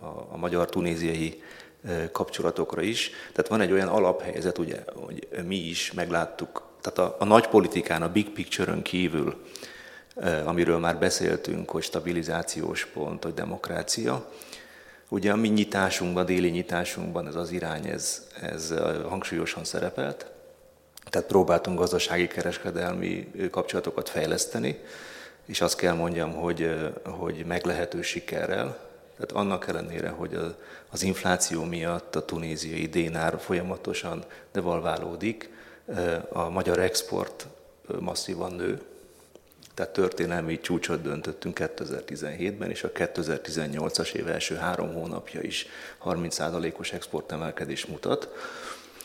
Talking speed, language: 115 wpm, Hungarian